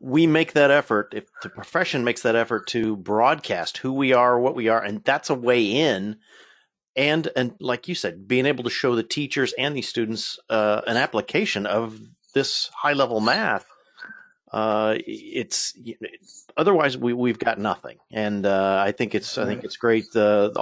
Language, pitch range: English, 110-160 Hz